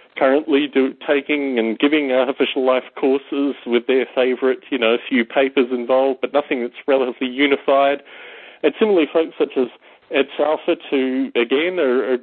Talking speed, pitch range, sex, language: 155 wpm, 130-150 Hz, male, English